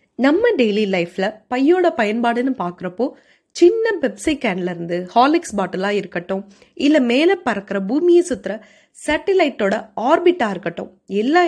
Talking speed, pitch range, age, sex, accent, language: 115 wpm, 195-305 Hz, 20-39, female, native, Tamil